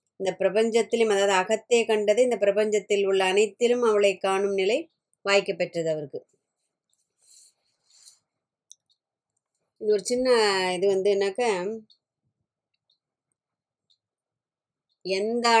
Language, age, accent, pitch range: Tamil, 20-39, native, 185-215 Hz